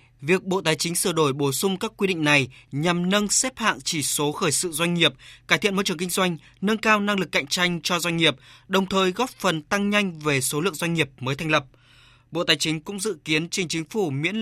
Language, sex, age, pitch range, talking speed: Vietnamese, male, 20-39, 145-190 Hz, 255 wpm